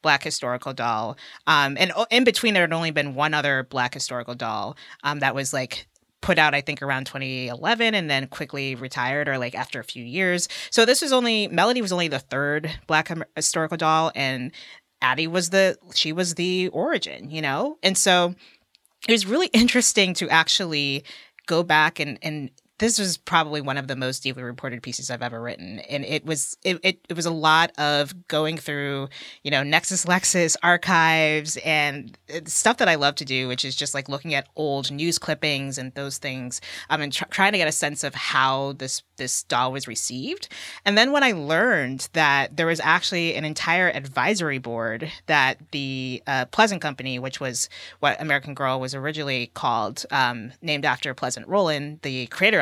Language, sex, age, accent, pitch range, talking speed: English, female, 30-49, American, 135-175 Hz, 190 wpm